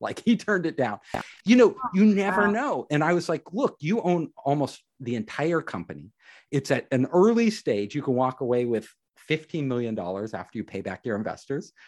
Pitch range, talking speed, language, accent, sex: 120-175 Hz, 195 wpm, English, American, male